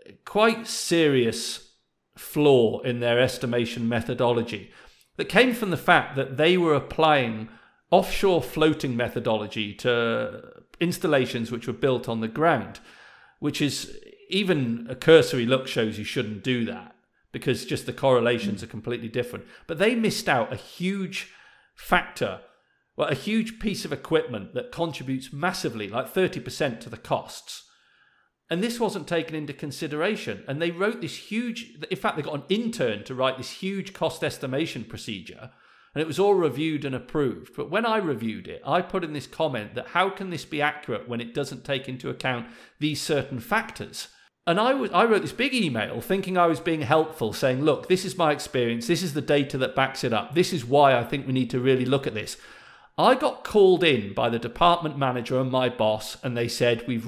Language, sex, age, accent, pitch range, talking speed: English, male, 40-59, British, 120-175 Hz, 185 wpm